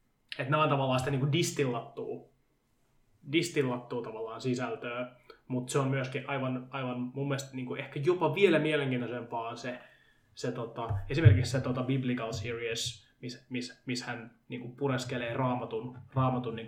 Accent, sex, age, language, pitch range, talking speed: native, male, 20-39, Finnish, 120-135 Hz, 150 wpm